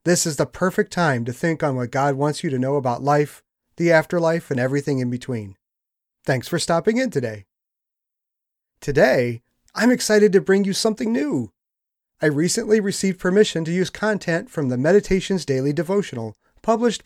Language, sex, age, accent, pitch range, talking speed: English, male, 40-59, American, 140-210 Hz, 170 wpm